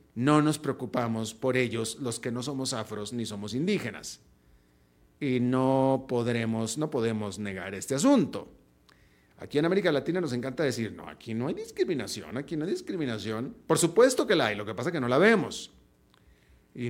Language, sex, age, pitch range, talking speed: Spanish, male, 40-59, 105-160 Hz, 180 wpm